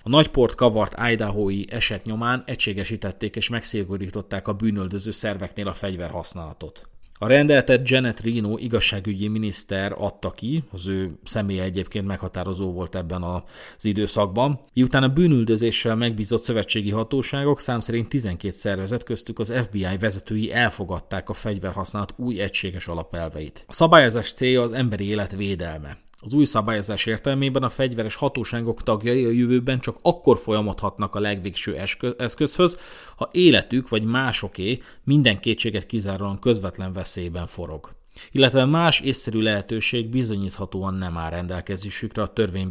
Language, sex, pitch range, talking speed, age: Hungarian, male, 100-120 Hz, 130 wpm, 30-49